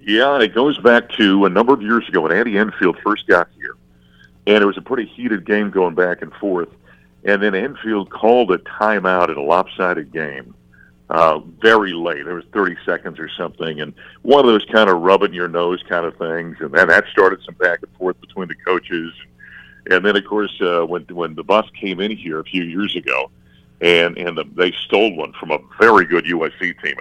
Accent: American